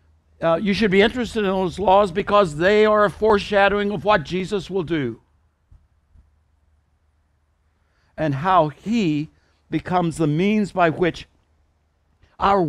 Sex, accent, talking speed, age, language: male, American, 130 wpm, 60-79, English